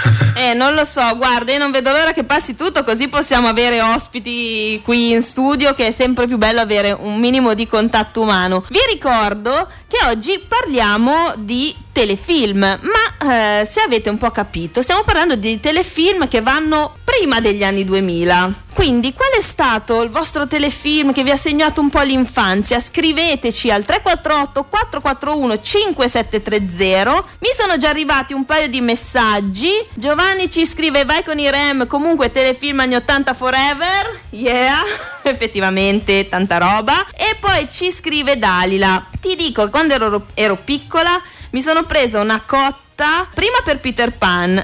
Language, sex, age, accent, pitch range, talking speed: Italian, female, 20-39, native, 215-305 Hz, 155 wpm